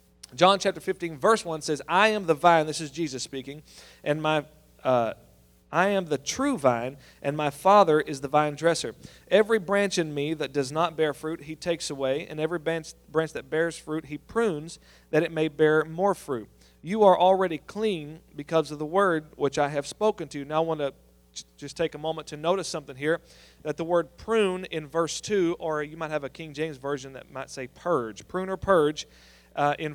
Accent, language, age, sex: American, English, 40-59, male